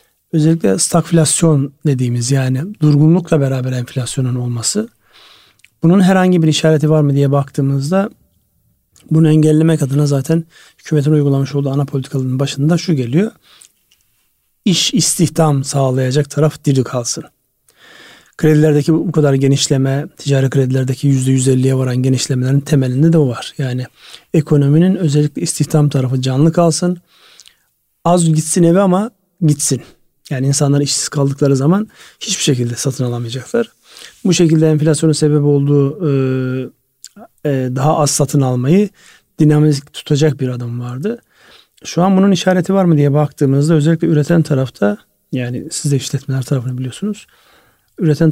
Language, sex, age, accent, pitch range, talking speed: Turkish, male, 40-59, native, 135-165 Hz, 125 wpm